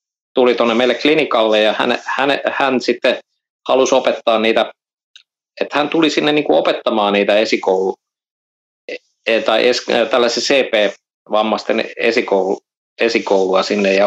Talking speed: 125 wpm